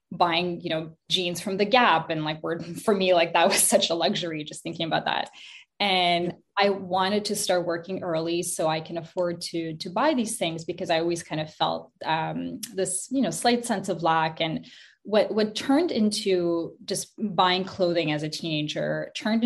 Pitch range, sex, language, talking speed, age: 165-205 Hz, female, English, 195 wpm, 10-29